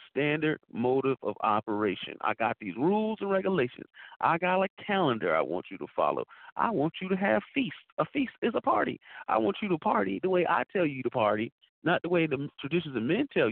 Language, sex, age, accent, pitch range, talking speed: English, male, 40-59, American, 130-185 Hz, 220 wpm